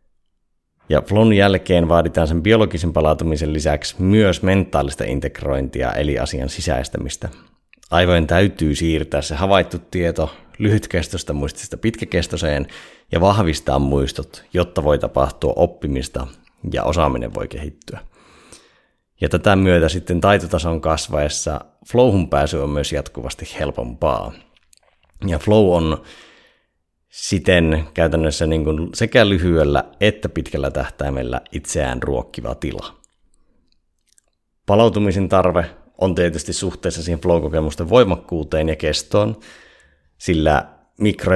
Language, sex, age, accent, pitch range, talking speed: Finnish, male, 30-49, native, 75-90 Hz, 105 wpm